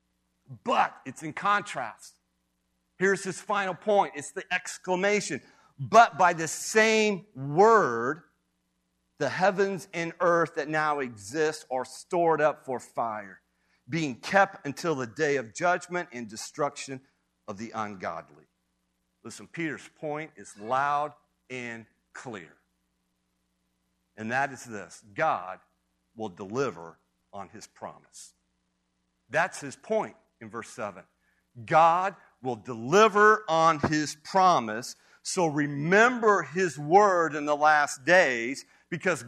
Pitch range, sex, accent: 115-190 Hz, male, American